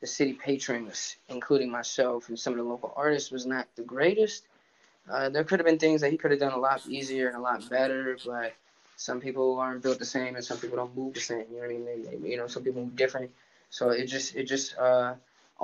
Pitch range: 120-130 Hz